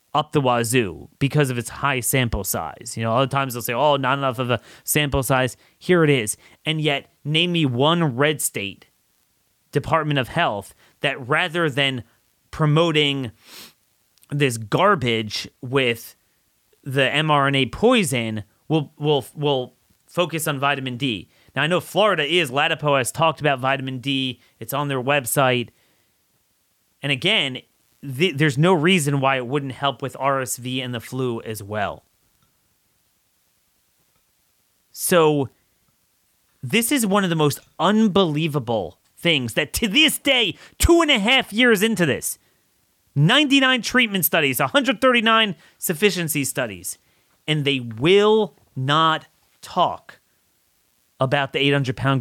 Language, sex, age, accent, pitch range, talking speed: English, male, 30-49, American, 125-170 Hz, 135 wpm